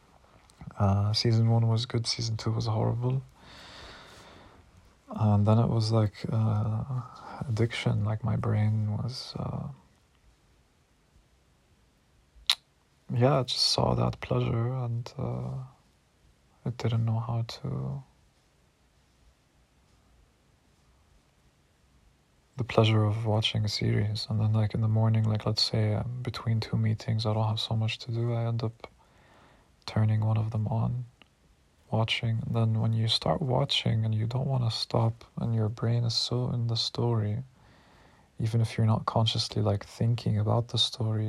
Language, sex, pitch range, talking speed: English, male, 105-115 Hz, 140 wpm